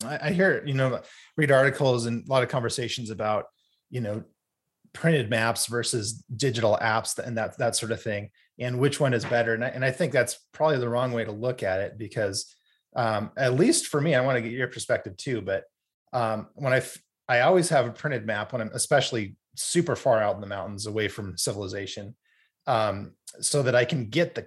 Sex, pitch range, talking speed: male, 110-135 Hz, 215 wpm